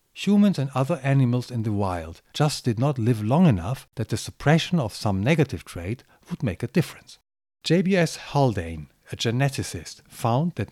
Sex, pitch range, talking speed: male, 105-150 Hz, 170 wpm